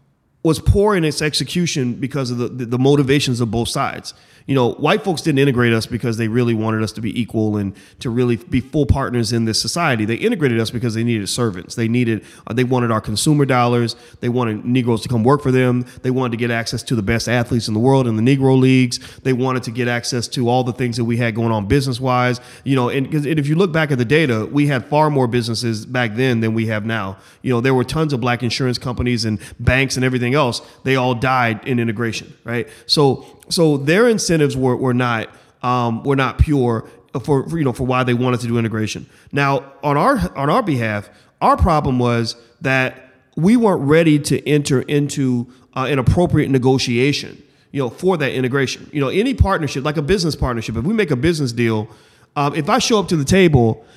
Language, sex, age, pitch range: English, male, 30-49, 120-140 Hz